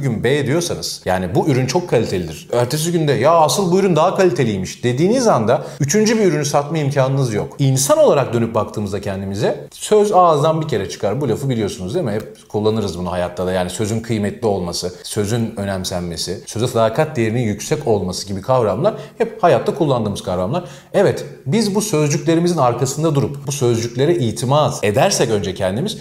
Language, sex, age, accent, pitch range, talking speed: Turkish, male, 40-59, native, 105-165 Hz, 170 wpm